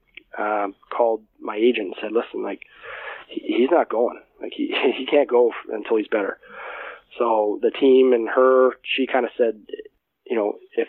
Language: English